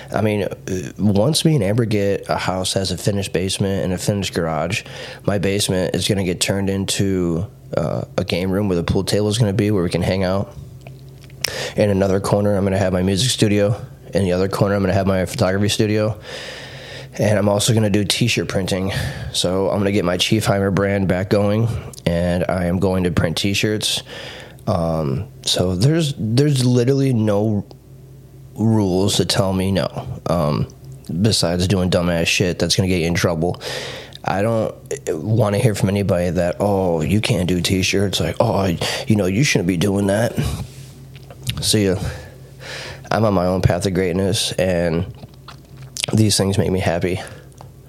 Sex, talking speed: male, 185 wpm